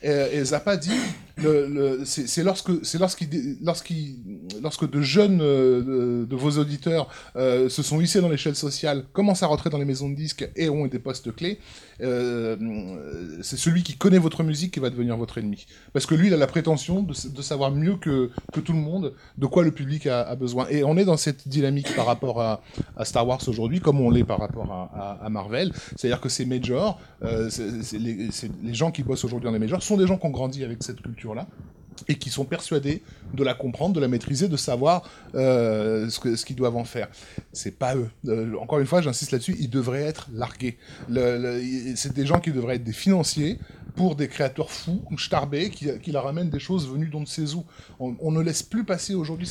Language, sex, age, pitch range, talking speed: French, male, 20-39, 125-165 Hz, 235 wpm